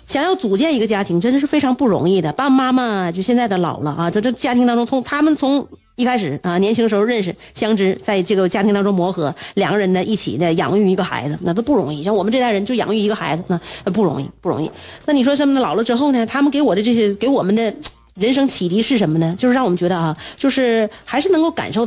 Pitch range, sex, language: 185-255 Hz, female, Chinese